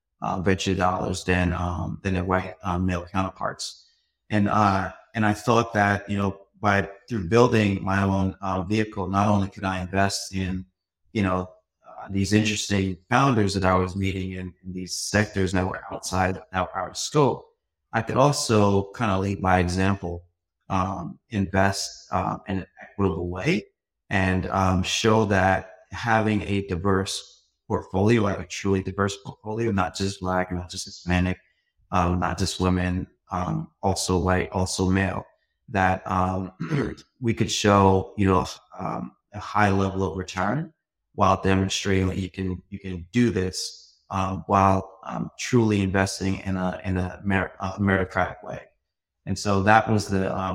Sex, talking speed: male, 165 wpm